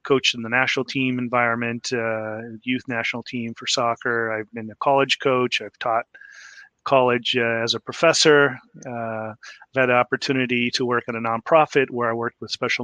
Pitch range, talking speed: 115-130 Hz, 180 wpm